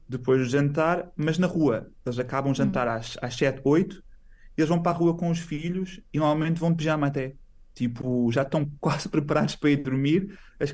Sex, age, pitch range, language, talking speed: male, 20-39, 125-155 Hz, Portuguese, 195 wpm